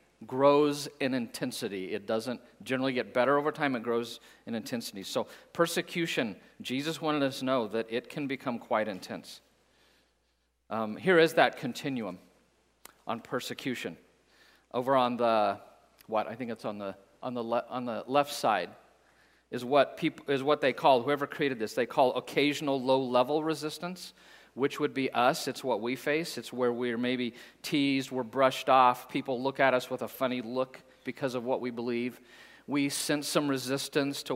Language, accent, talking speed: English, American, 175 wpm